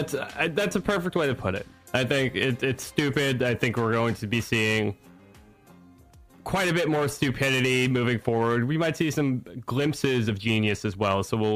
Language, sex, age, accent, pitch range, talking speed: English, male, 20-39, American, 115-135 Hz, 190 wpm